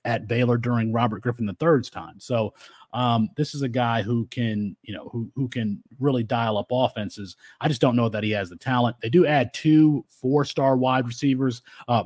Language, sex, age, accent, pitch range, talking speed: English, male, 30-49, American, 115-140 Hz, 205 wpm